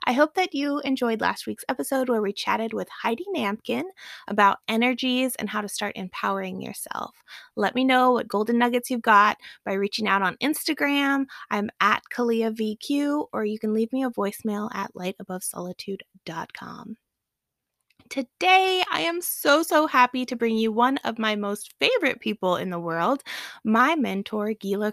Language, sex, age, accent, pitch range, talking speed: English, female, 20-39, American, 200-255 Hz, 165 wpm